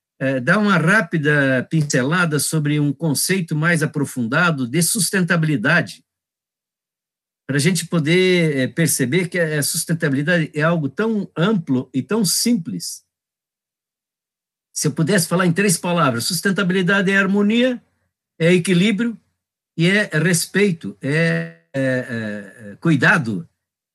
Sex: male